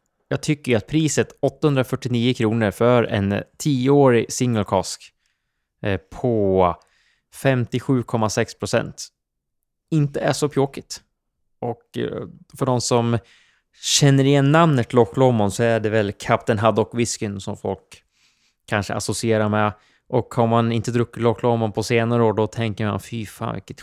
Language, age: Swedish, 20-39